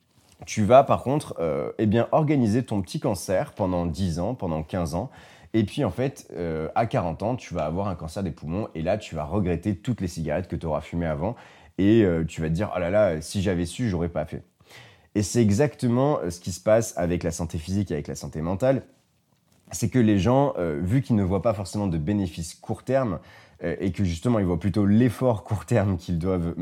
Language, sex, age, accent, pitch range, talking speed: English, male, 30-49, French, 85-115 Hz, 230 wpm